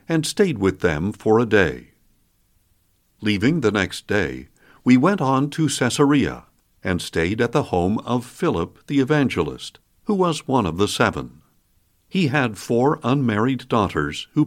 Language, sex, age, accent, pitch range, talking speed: English, male, 60-79, American, 95-145 Hz, 155 wpm